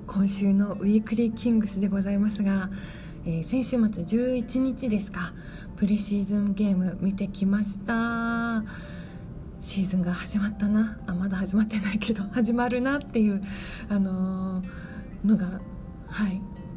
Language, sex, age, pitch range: Japanese, female, 20-39, 185-215 Hz